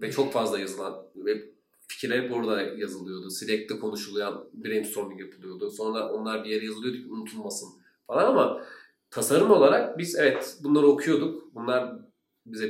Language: Turkish